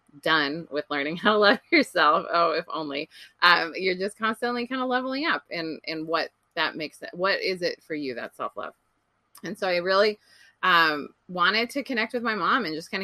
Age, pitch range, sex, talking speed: 20-39, 150-190 Hz, female, 205 wpm